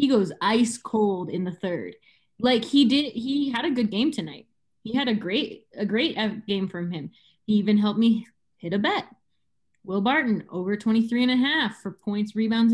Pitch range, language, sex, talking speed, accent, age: 175-220 Hz, English, female, 200 wpm, American, 20-39